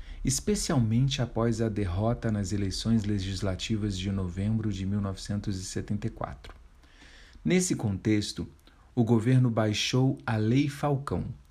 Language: Portuguese